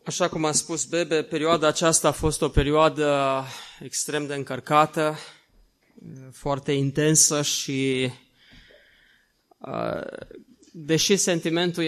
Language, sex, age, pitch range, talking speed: Romanian, male, 20-39, 135-160 Hz, 95 wpm